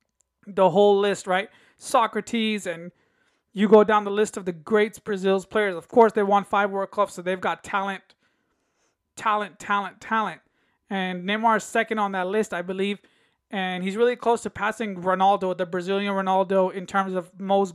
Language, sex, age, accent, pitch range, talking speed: English, male, 20-39, American, 195-225 Hz, 180 wpm